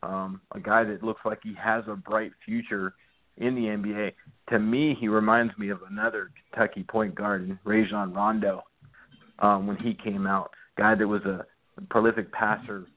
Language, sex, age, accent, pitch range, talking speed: English, male, 40-59, American, 105-115 Hz, 170 wpm